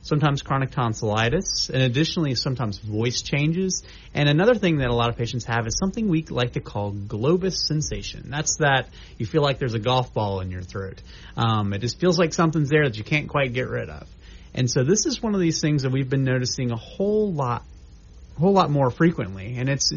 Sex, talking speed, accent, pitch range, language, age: male, 220 wpm, American, 110-150 Hz, English, 30-49